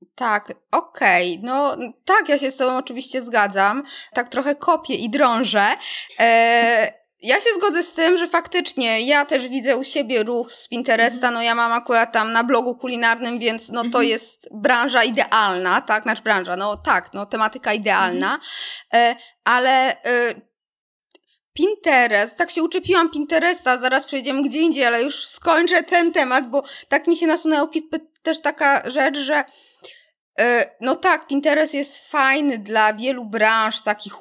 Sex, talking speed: female, 150 wpm